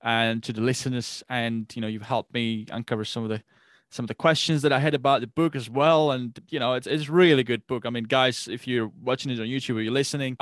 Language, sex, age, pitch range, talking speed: English, male, 20-39, 115-150 Hz, 265 wpm